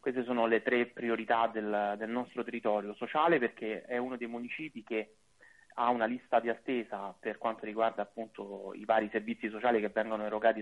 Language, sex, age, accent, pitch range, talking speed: Italian, male, 30-49, native, 105-120 Hz, 180 wpm